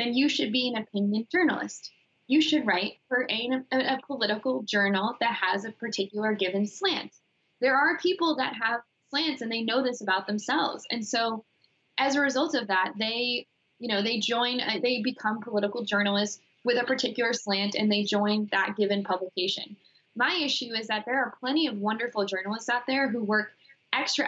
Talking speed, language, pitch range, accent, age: 185 wpm, English, 200-245 Hz, American, 10-29